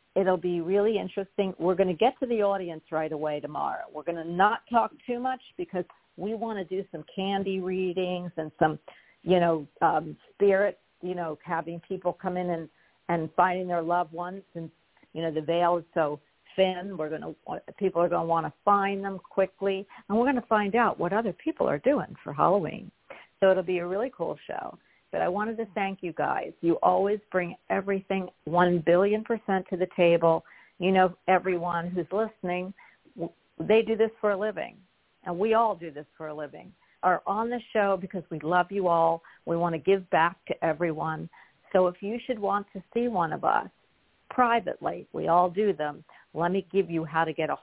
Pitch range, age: 170-200 Hz, 50-69